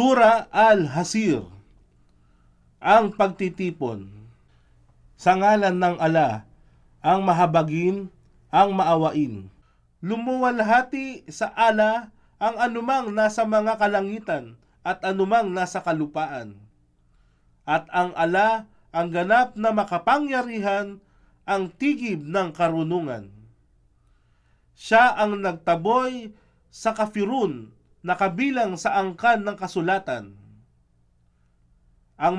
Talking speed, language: 85 wpm, Filipino